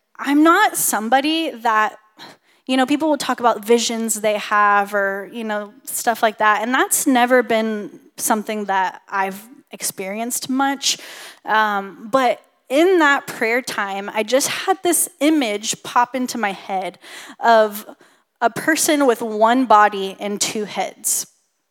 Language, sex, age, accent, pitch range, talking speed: English, female, 10-29, American, 215-290 Hz, 145 wpm